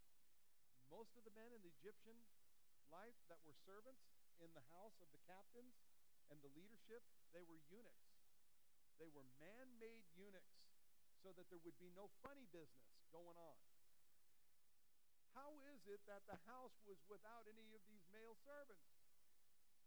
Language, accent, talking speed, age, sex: English, American, 150 wpm, 50-69, male